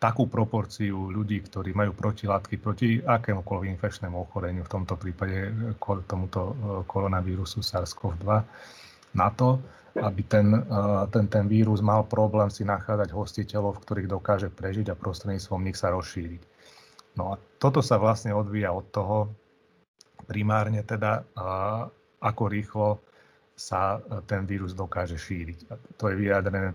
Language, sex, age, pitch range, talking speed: Slovak, male, 30-49, 95-105 Hz, 130 wpm